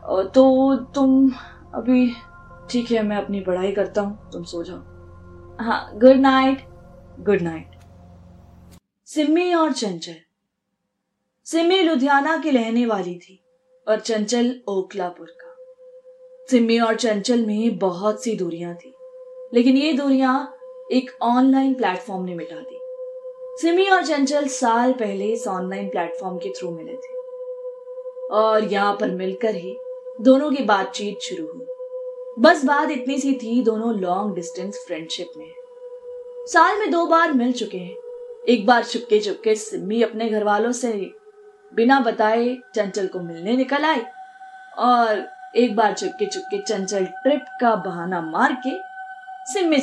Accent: native